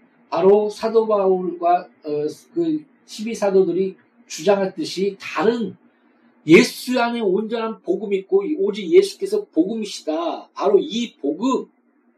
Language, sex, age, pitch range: Korean, male, 50-69, 185-255 Hz